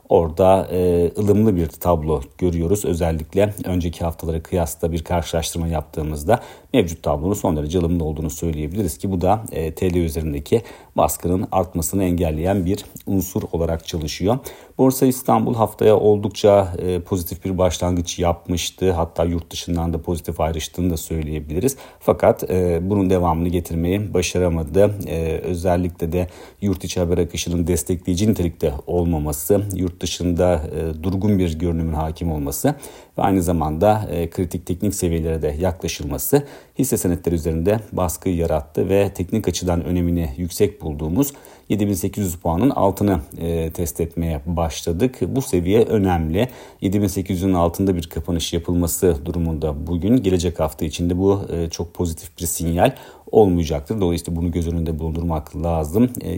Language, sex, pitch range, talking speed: Turkish, male, 85-95 Hz, 130 wpm